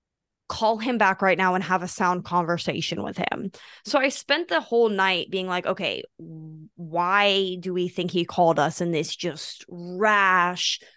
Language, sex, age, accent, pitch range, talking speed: English, female, 20-39, American, 180-245 Hz, 175 wpm